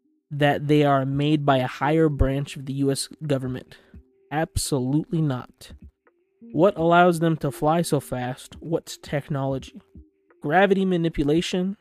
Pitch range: 140-175 Hz